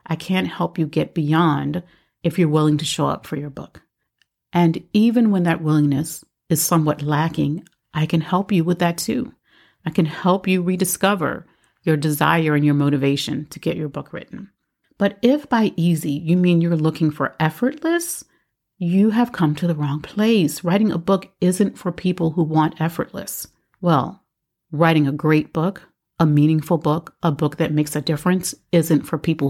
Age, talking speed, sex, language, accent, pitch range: 40-59, 180 wpm, female, English, American, 155-190 Hz